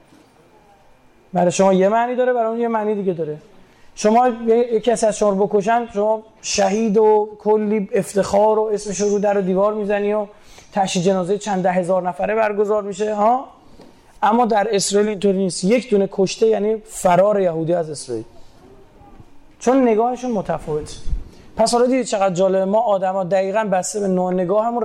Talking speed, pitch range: 165 wpm, 190-225 Hz